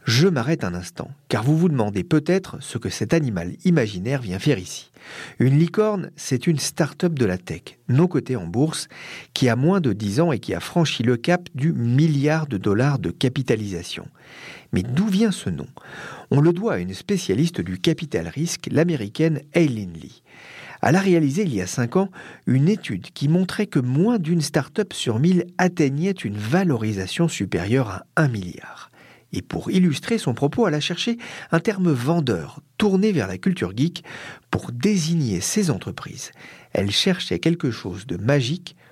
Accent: French